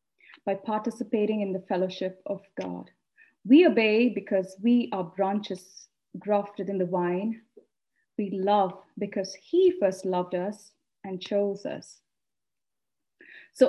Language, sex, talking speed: English, female, 125 wpm